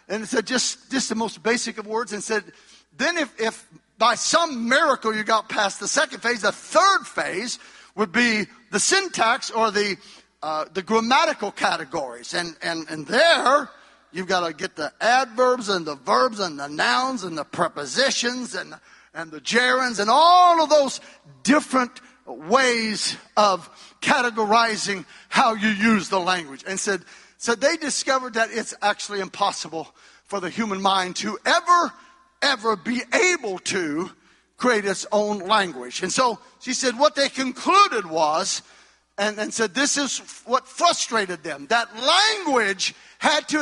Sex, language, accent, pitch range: male, English, American, 200-265 Hz